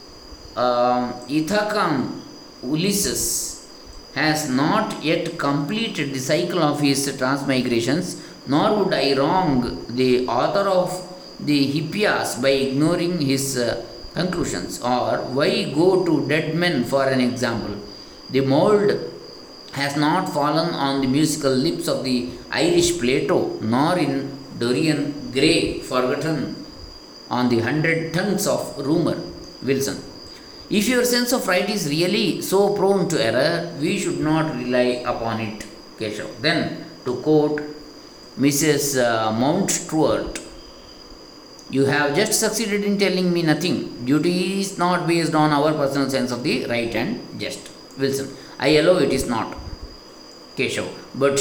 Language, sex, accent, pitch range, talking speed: Kannada, male, native, 125-180 Hz, 135 wpm